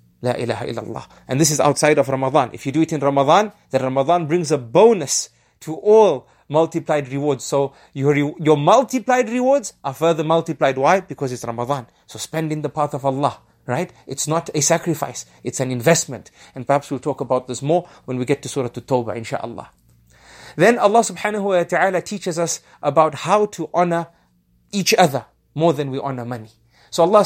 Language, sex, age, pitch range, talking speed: English, male, 30-49, 135-175 Hz, 185 wpm